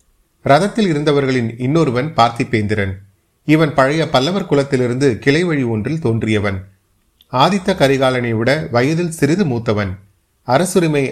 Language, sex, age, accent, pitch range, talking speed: Tamil, male, 30-49, native, 110-145 Hz, 95 wpm